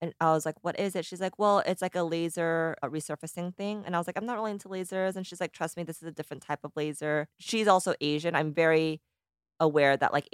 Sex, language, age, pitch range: female, English, 20-39, 150-185 Hz